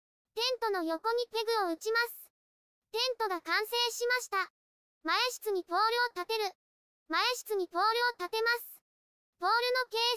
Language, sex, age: Japanese, male, 20-39